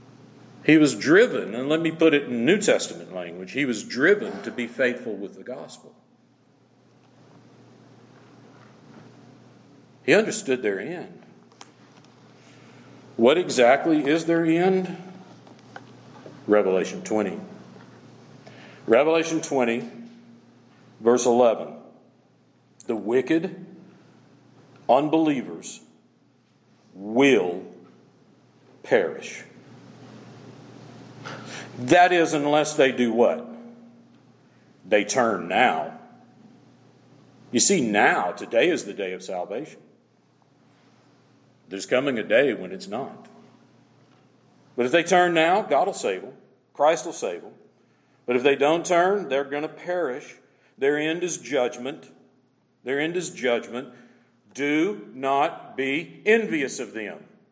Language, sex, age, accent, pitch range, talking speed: English, male, 50-69, American, 120-160 Hz, 105 wpm